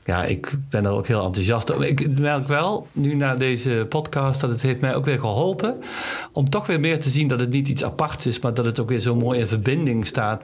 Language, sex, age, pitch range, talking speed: Dutch, male, 50-69, 115-140 Hz, 255 wpm